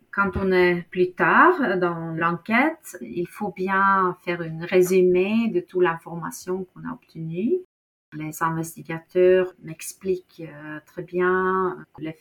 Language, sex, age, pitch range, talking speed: French, female, 30-49, 160-185 Hz, 125 wpm